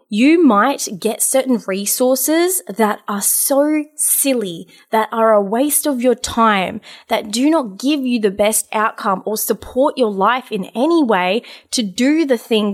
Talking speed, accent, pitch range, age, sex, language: 165 wpm, Australian, 195-265 Hz, 20-39, female, English